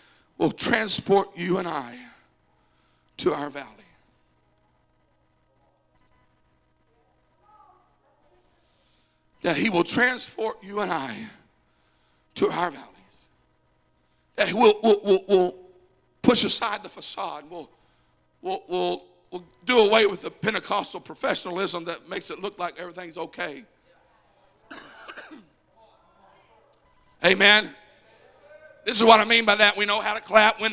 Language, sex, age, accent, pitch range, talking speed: English, male, 60-79, American, 195-275 Hz, 115 wpm